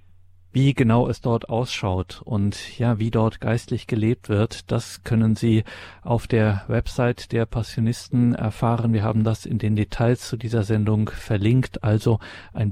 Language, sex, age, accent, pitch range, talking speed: German, male, 40-59, German, 105-115 Hz, 155 wpm